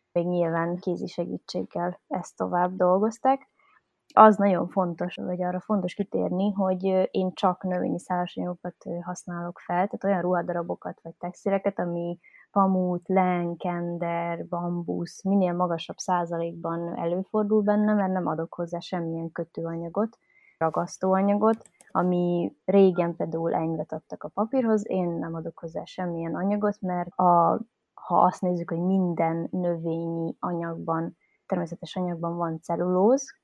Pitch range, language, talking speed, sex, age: 170-190 Hz, Hungarian, 120 wpm, female, 20-39